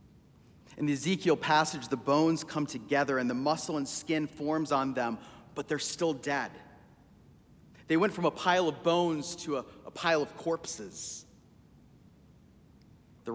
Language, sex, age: English, male, 30-49